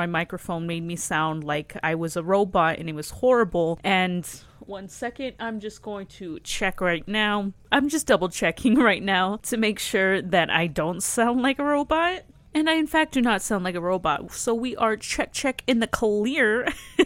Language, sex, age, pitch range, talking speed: English, female, 30-49, 170-230 Hz, 205 wpm